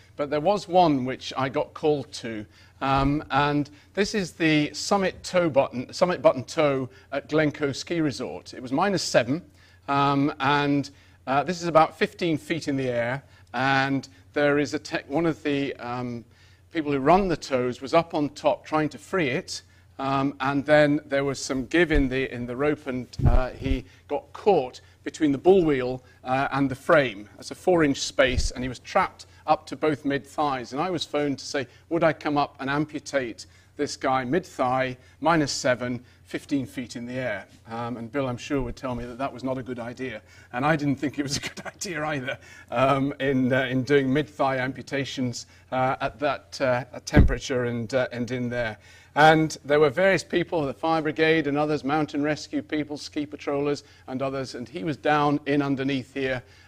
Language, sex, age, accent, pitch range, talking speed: English, male, 40-59, British, 125-150 Hz, 200 wpm